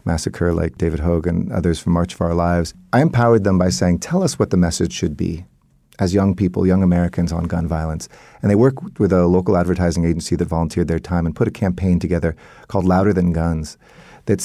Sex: male